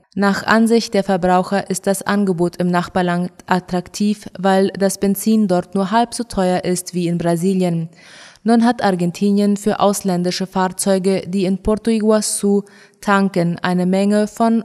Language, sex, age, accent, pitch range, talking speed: German, female, 20-39, German, 185-210 Hz, 150 wpm